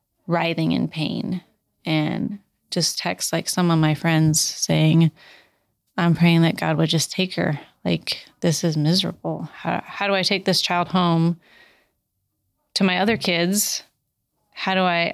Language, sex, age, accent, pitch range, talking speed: English, female, 20-39, American, 165-185 Hz, 155 wpm